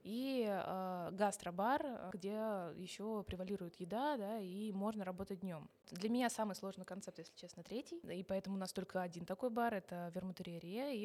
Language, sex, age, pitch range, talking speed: Russian, female, 20-39, 180-210 Hz, 180 wpm